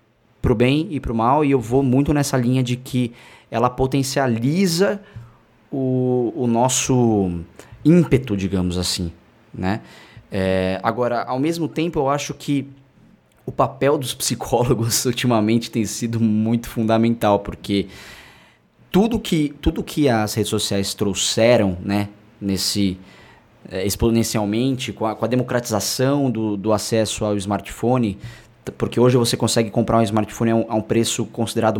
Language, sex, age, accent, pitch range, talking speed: Portuguese, male, 20-39, Brazilian, 110-130 Hz, 130 wpm